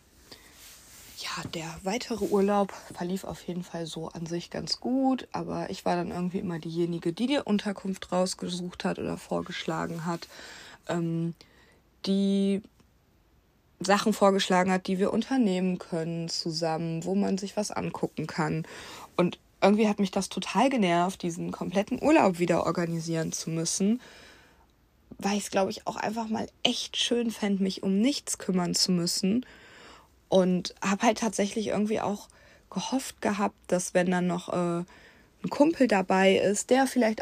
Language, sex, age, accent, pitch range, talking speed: German, female, 20-39, German, 170-205 Hz, 150 wpm